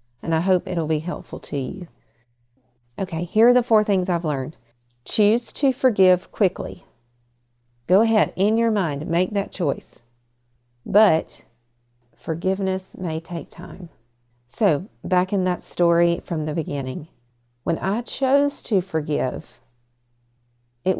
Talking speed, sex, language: 135 wpm, female, English